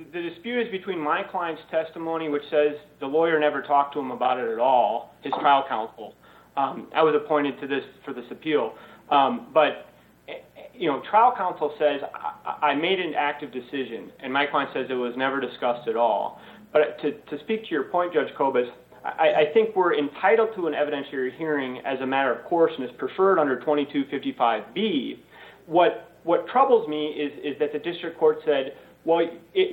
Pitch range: 145-205 Hz